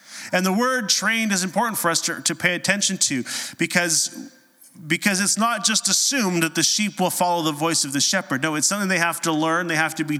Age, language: 30-49, English